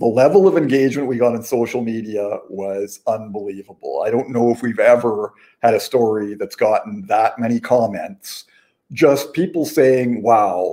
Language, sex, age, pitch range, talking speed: English, male, 50-69, 115-140 Hz, 160 wpm